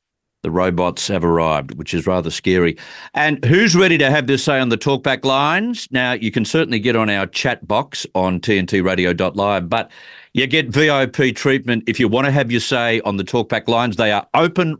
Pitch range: 105-145 Hz